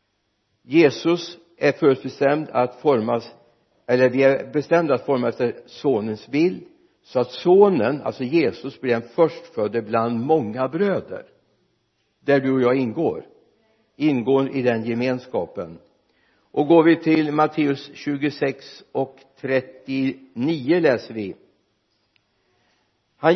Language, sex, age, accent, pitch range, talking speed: Swedish, male, 60-79, native, 115-150 Hz, 115 wpm